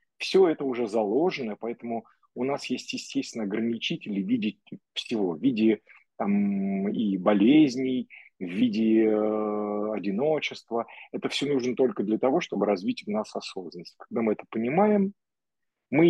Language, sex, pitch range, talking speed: Russian, male, 105-140 Hz, 140 wpm